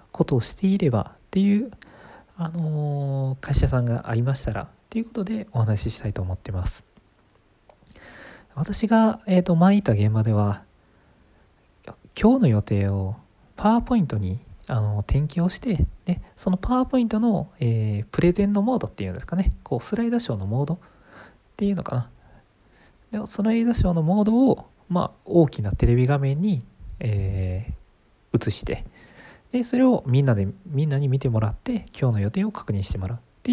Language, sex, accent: Japanese, male, native